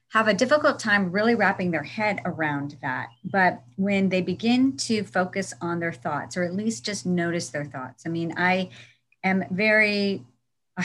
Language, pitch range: English, 155-190 Hz